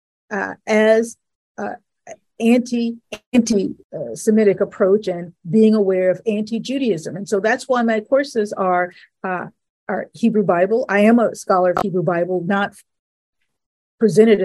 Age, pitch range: 50-69, 185-220 Hz